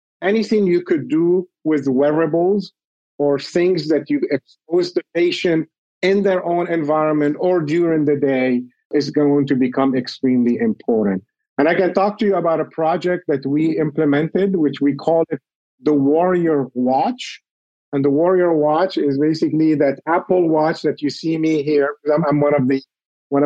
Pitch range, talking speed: 145-175 Hz, 165 wpm